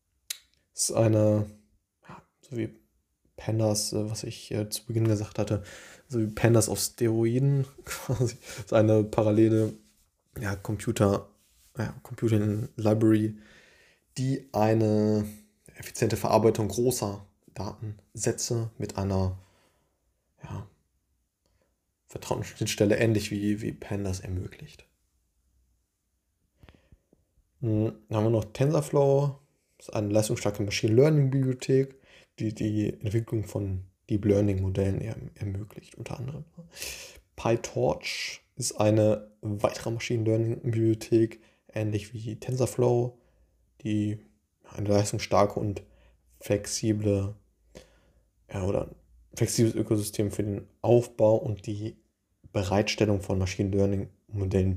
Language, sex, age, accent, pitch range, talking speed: German, male, 20-39, German, 100-115 Hz, 95 wpm